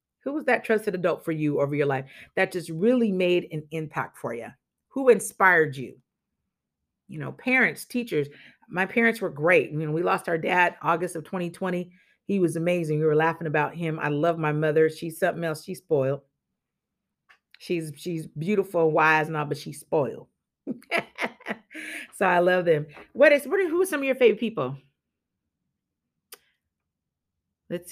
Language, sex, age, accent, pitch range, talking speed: English, female, 40-59, American, 155-230 Hz, 170 wpm